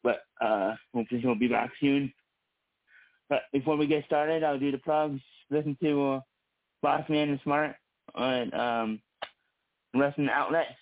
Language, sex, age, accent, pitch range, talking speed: English, male, 20-39, American, 125-145 Hz, 150 wpm